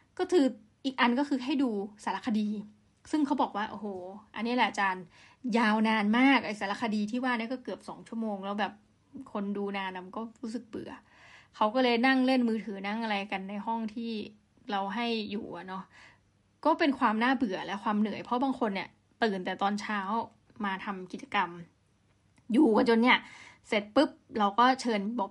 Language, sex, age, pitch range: Thai, female, 20-39, 205-250 Hz